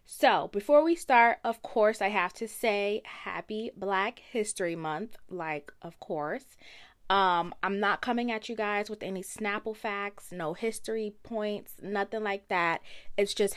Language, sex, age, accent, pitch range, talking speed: English, female, 20-39, American, 185-230 Hz, 160 wpm